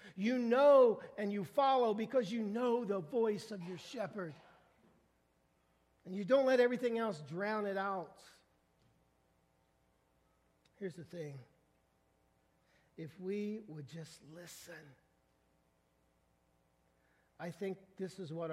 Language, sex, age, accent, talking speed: English, male, 50-69, American, 115 wpm